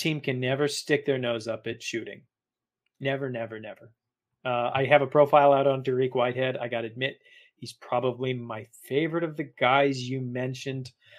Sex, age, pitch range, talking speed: male, 30-49, 120-140 Hz, 180 wpm